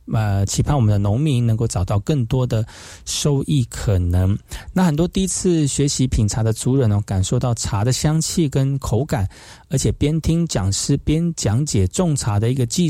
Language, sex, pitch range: Chinese, male, 110-150 Hz